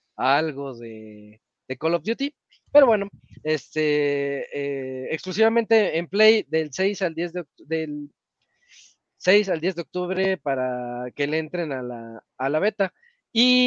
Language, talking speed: Spanish, 155 wpm